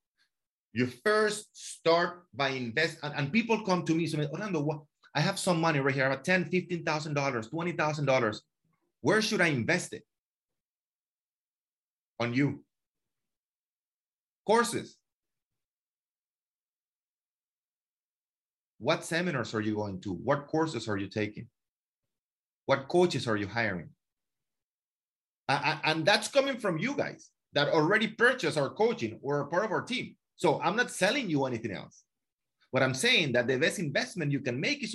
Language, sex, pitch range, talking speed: English, male, 130-180 Hz, 150 wpm